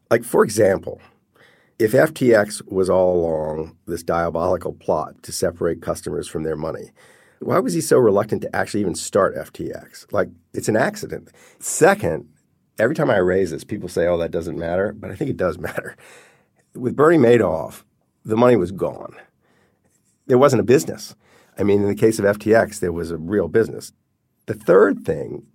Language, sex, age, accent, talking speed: English, male, 50-69, American, 175 wpm